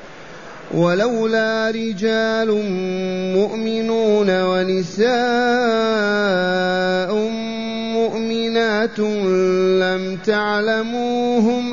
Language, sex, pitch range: Arabic, male, 200-230 Hz